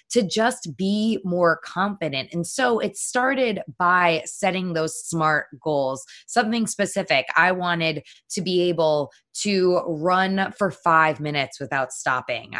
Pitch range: 155-195 Hz